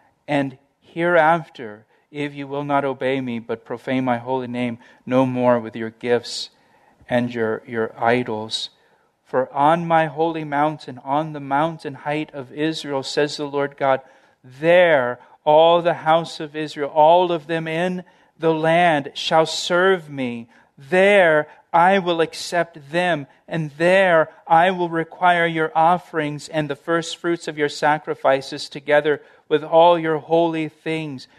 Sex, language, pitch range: male, English, 130-165 Hz